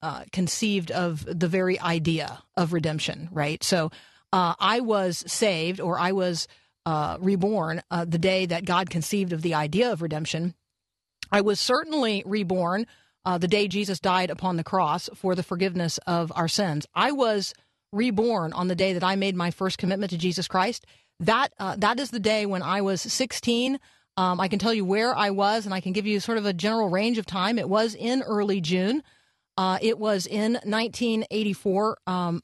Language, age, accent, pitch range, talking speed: English, 40-59, American, 175-215 Hz, 190 wpm